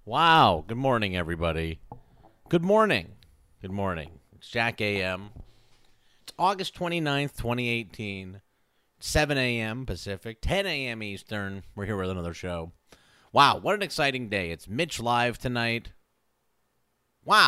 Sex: male